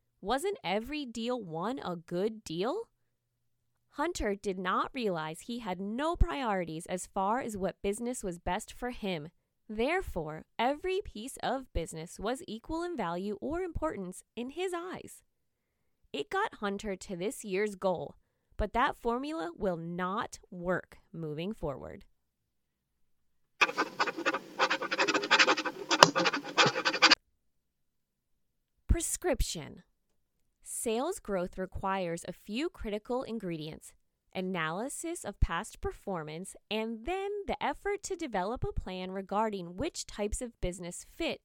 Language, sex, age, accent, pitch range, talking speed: English, female, 20-39, American, 180-250 Hz, 115 wpm